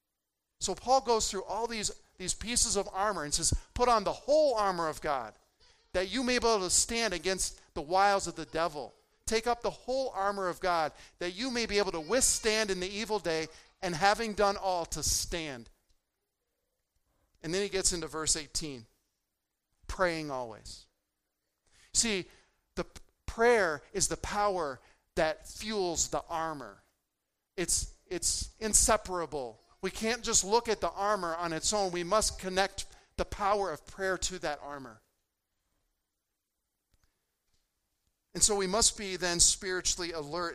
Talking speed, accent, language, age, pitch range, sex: 155 wpm, American, English, 50-69, 155-215 Hz, male